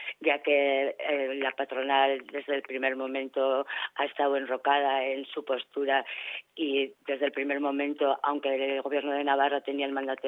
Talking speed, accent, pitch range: 165 wpm, Spanish, 140-155 Hz